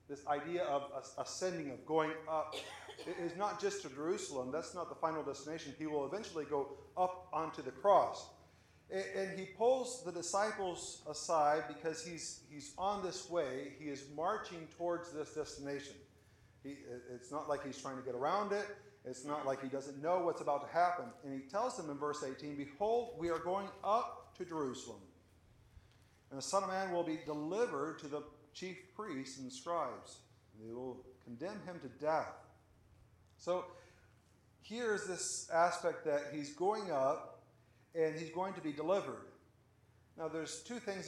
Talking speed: 165 wpm